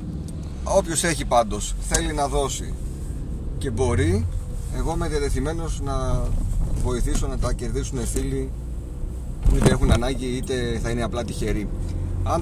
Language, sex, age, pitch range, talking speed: Greek, male, 30-49, 105-135 Hz, 130 wpm